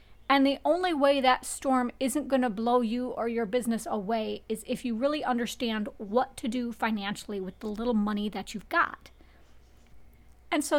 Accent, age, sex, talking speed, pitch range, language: American, 40-59, female, 185 wpm, 210-275 Hz, English